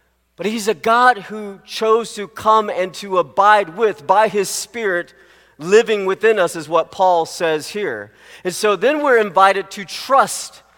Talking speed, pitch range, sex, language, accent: 165 wpm, 175-225 Hz, male, English, American